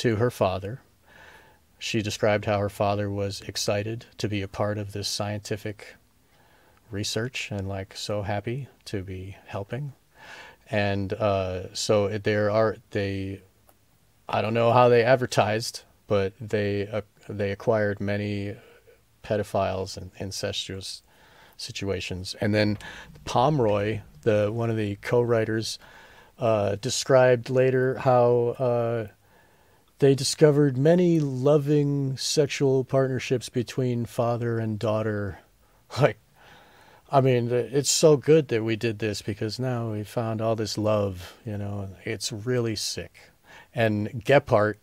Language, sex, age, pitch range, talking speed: English, male, 40-59, 100-125 Hz, 125 wpm